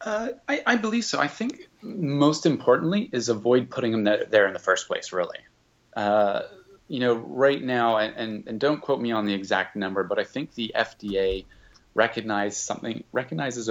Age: 30-49